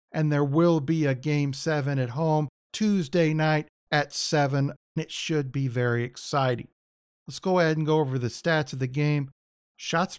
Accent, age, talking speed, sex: American, 50-69, 175 wpm, male